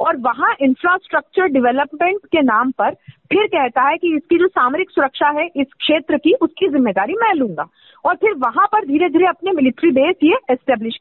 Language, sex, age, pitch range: Hindi, female, 40-59, 250-340 Hz